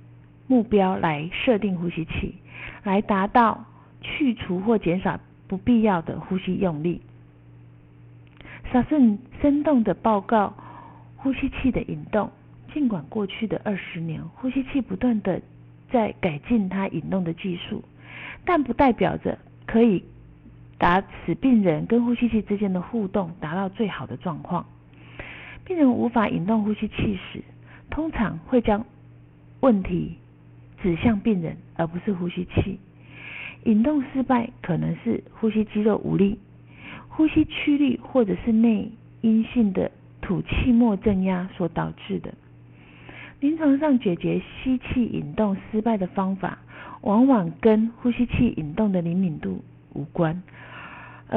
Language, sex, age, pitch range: Chinese, female, 50-69, 170-235 Hz